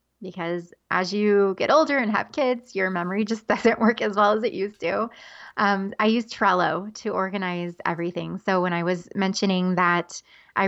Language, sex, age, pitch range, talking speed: English, female, 20-39, 175-200 Hz, 185 wpm